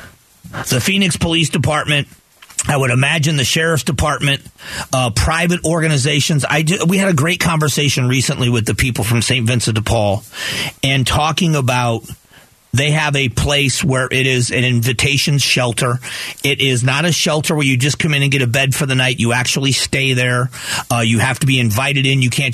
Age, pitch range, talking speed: 40-59, 120-145 Hz, 185 wpm